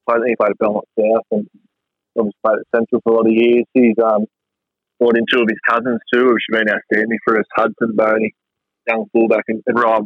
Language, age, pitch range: English, 20-39, 110-120 Hz